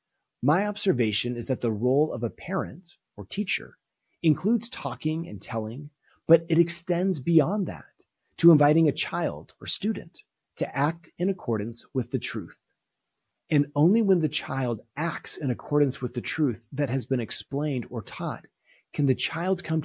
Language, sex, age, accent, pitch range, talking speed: English, male, 30-49, American, 125-160 Hz, 165 wpm